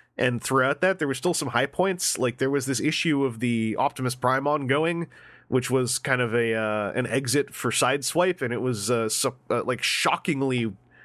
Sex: male